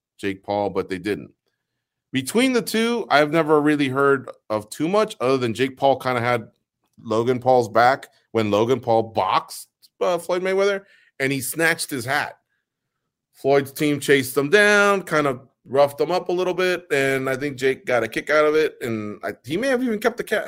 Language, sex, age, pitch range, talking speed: English, male, 30-49, 120-170 Hz, 200 wpm